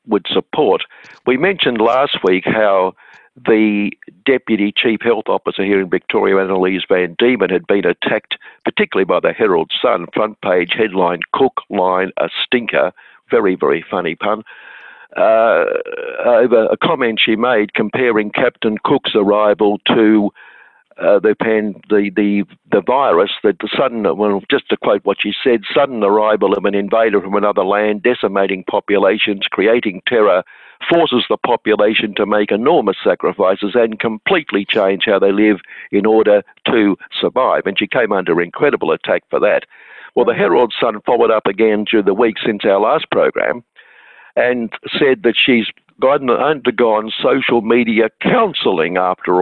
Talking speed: 150 wpm